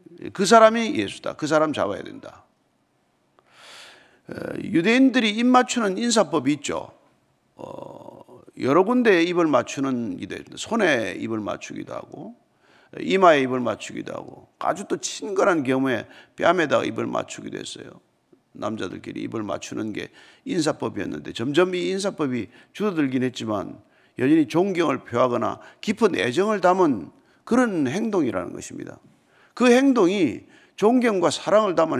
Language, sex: Korean, male